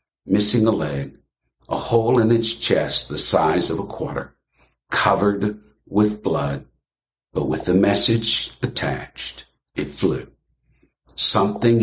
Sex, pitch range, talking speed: male, 90-120 Hz, 120 wpm